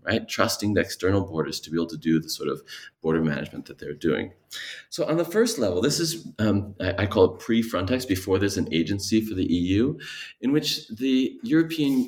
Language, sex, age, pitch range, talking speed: English, male, 30-49, 90-115 Hz, 210 wpm